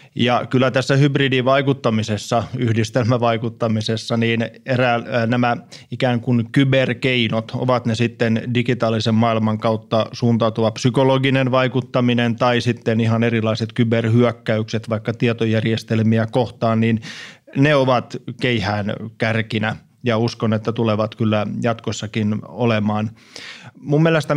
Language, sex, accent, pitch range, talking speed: Finnish, male, native, 115-130 Hz, 100 wpm